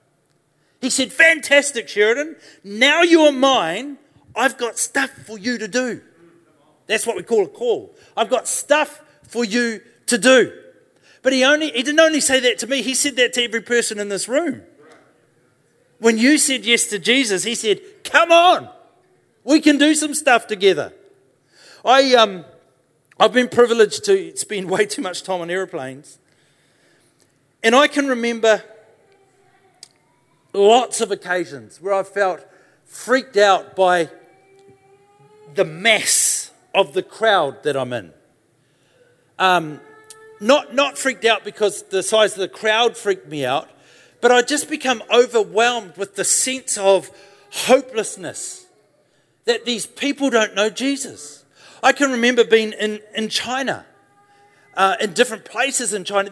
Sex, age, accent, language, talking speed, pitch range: male, 40-59, Australian, English, 145 wpm, 200-285 Hz